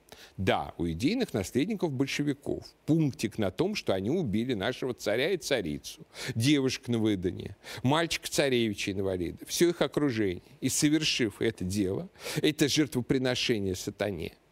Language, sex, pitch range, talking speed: Russian, male, 100-145 Hz, 130 wpm